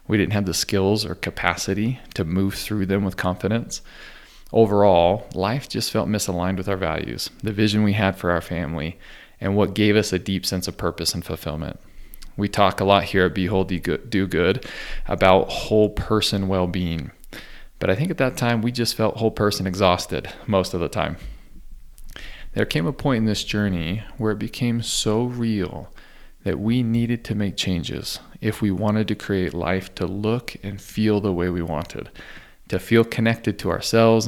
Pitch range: 90-110 Hz